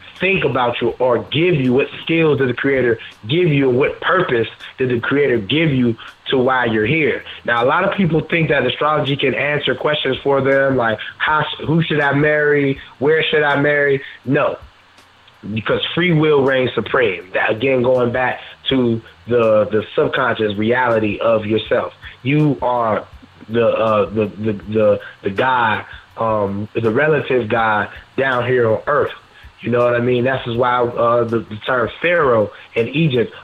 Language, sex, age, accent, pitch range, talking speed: English, male, 20-39, American, 115-145 Hz, 165 wpm